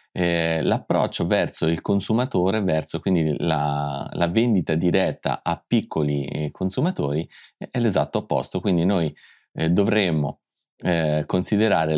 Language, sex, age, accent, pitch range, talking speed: Italian, male, 30-49, native, 75-90 Hz, 100 wpm